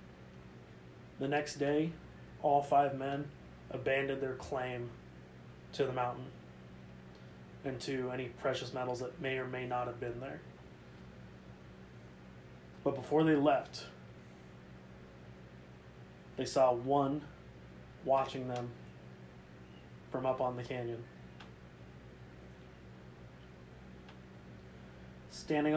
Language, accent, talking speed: English, American, 95 wpm